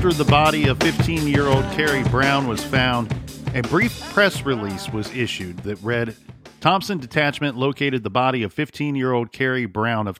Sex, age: male, 40-59